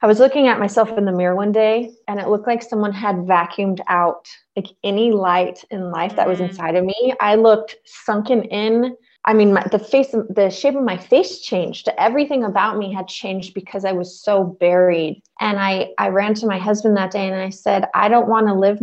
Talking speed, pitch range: 220 wpm, 190-225 Hz